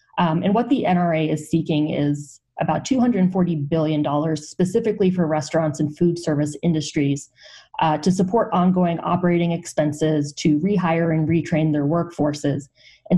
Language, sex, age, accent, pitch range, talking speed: English, female, 20-39, American, 155-180 Hz, 140 wpm